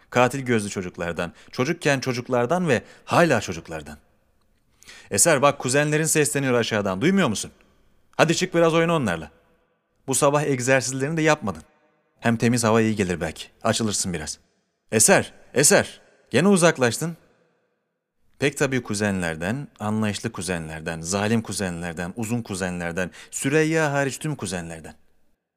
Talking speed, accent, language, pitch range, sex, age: 115 wpm, native, Turkish, 85-130 Hz, male, 40-59